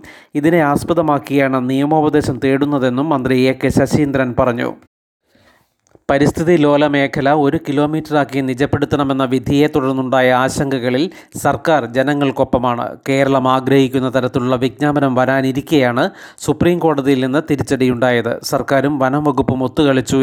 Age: 30-49